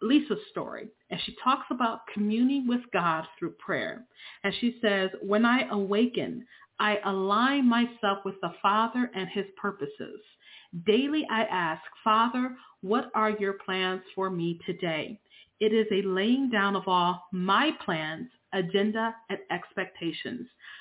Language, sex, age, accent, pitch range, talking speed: English, female, 40-59, American, 190-240 Hz, 140 wpm